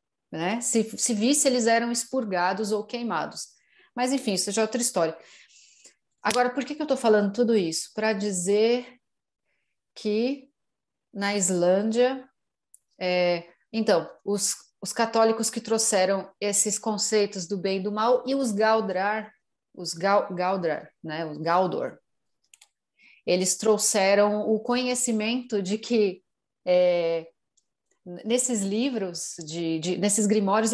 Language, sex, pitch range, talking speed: Portuguese, female, 185-235 Hz, 130 wpm